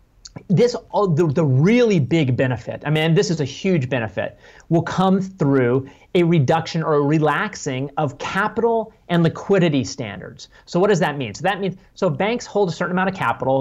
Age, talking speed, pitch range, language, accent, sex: 30-49, 185 wpm, 135-190 Hz, English, American, male